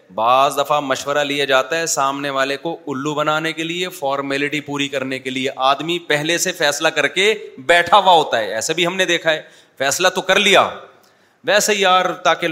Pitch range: 135-180 Hz